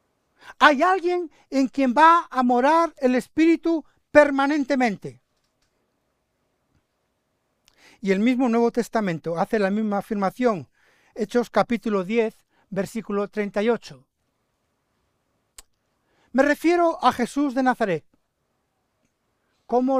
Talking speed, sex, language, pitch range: 95 wpm, male, Spanish, 195-270 Hz